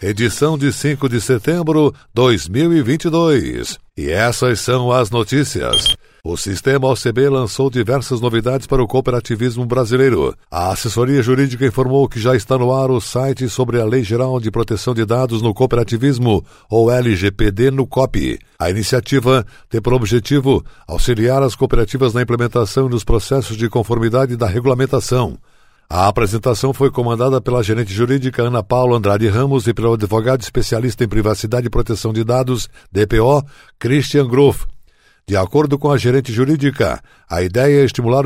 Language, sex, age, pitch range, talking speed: Portuguese, male, 60-79, 115-135 Hz, 150 wpm